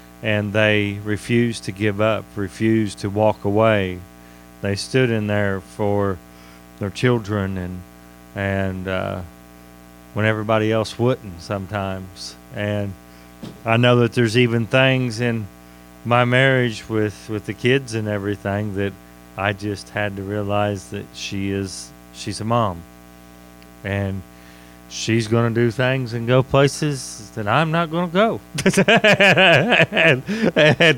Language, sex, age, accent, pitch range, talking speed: English, male, 40-59, American, 85-125 Hz, 135 wpm